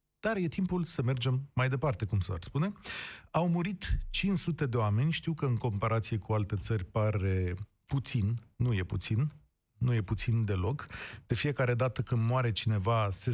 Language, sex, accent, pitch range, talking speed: Romanian, male, native, 110-145 Hz, 170 wpm